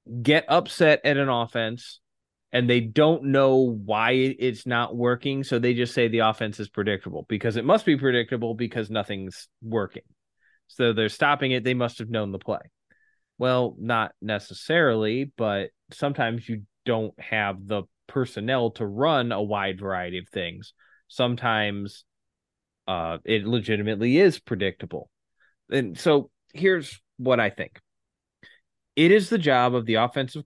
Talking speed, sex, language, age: 150 wpm, male, English, 20-39